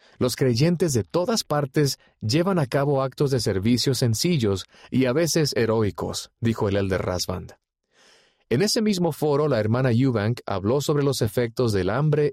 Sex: male